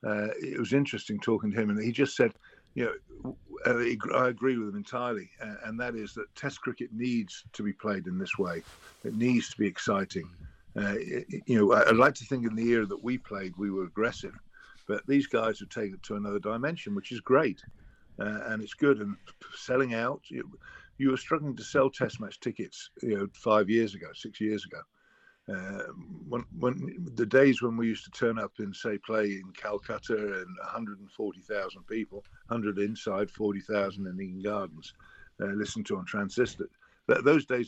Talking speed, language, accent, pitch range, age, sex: 200 wpm, English, British, 105-125 Hz, 50-69, male